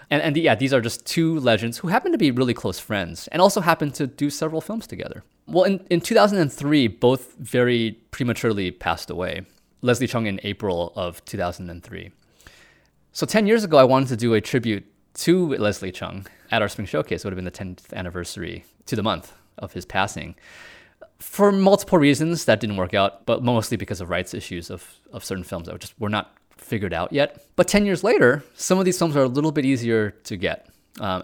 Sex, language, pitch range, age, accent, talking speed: male, English, 100-150 Hz, 20-39, American, 205 wpm